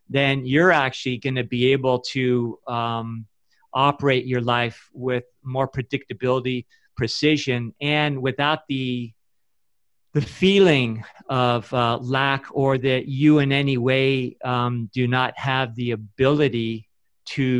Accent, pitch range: American, 120-140 Hz